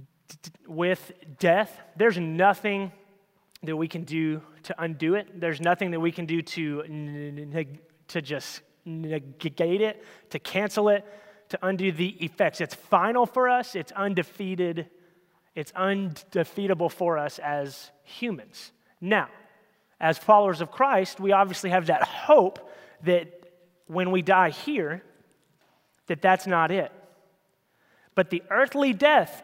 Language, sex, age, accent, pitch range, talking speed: English, male, 30-49, American, 170-225 Hz, 135 wpm